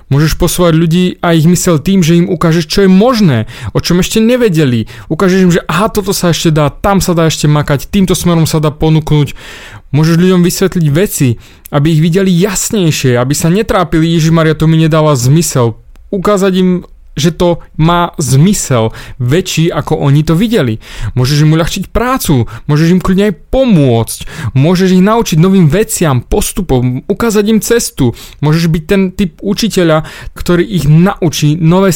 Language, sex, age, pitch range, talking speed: Slovak, male, 30-49, 135-190 Hz, 170 wpm